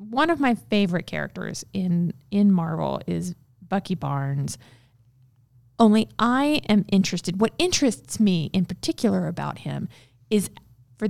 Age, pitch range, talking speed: 20-39, 145-215 Hz, 130 wpm